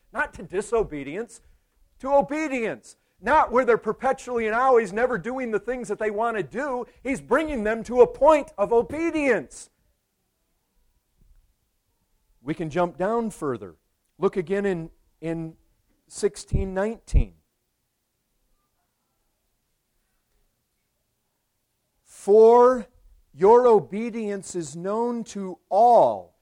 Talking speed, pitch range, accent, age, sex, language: 100 wpm, 165-255 Hz, American, 40-59, male, English